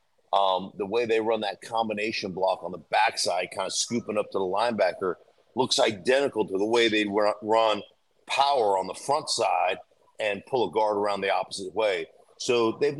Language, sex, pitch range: English, male, 100-125 Hz